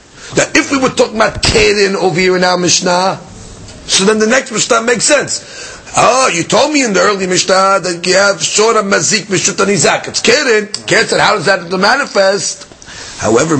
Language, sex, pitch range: English, male, 150-215 Hz